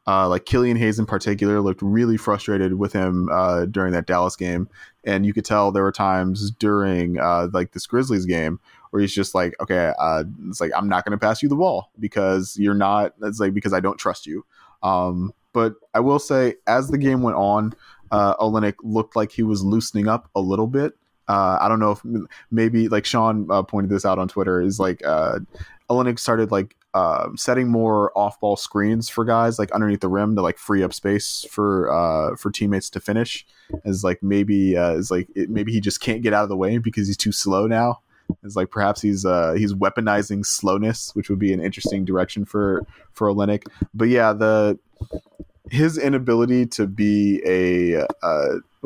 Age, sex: 20-39, male